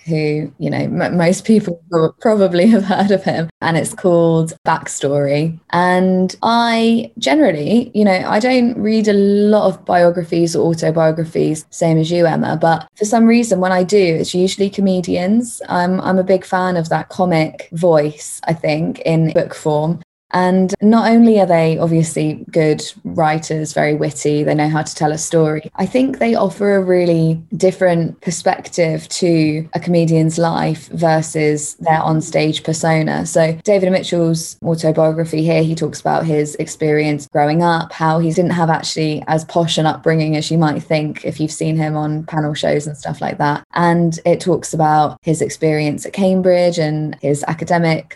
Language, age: English, 20-39